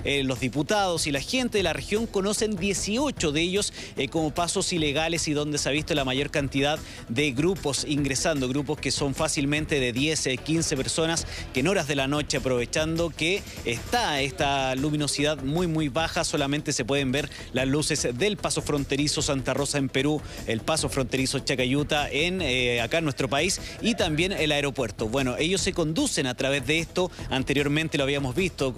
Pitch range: 135-165 Hz